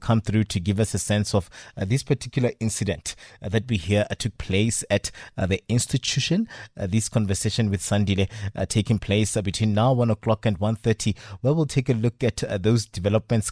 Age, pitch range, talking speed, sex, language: 30-49, 100-120 Hz, 210 wpm, male, English